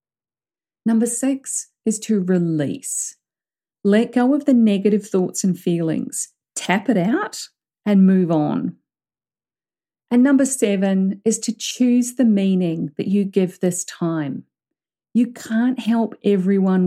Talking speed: 130 wpm